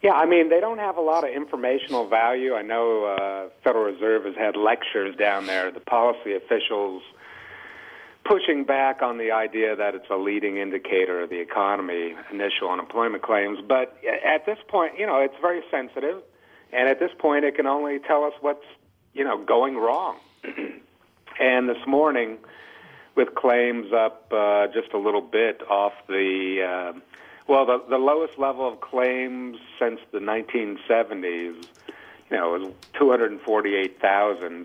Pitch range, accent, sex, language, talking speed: 105-145 Hz, American, male, English, 155 wpm